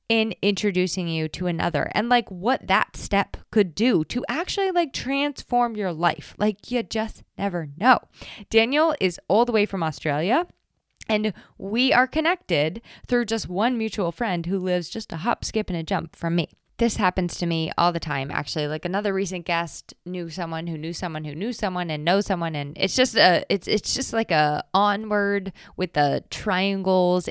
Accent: American